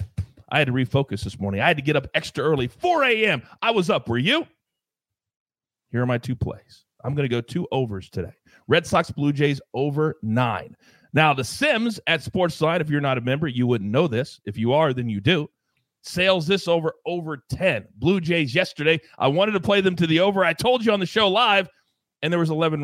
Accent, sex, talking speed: American, male, 225 wpm